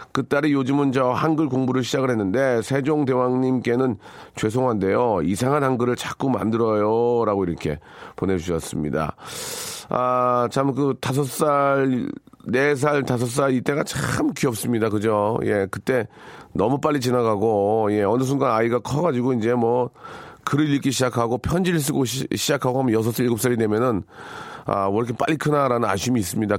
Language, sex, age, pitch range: Korean, male, 40-59, 110-140 Hz